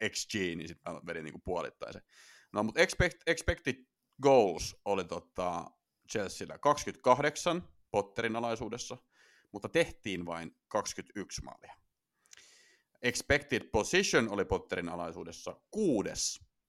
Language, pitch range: Finnish, 90-135 Hz